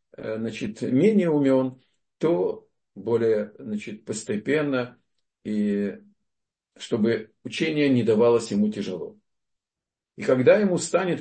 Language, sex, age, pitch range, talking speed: Russian, male, 50-69, 120-175 Hz, 95 wpm